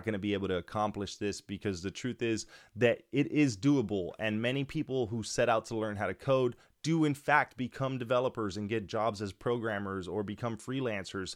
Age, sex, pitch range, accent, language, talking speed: 20-39, male, 105-135 Hz, American, English, 205 wpm